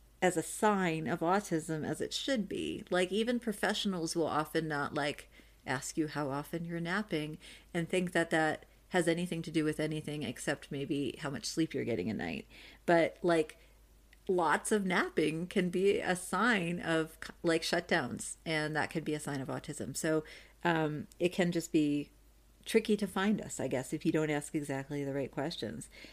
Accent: American